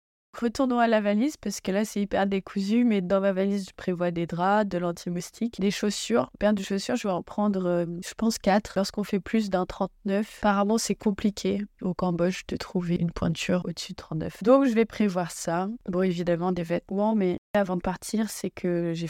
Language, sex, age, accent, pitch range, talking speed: French, female, 20-39, French, 175-200 Hz, 210 wpm